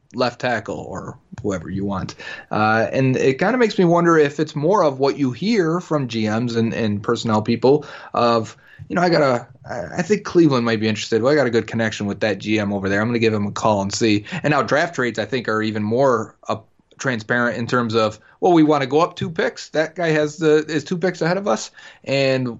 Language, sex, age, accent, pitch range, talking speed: English, male, 30-49, American, 110-145 Hz, 245 wpm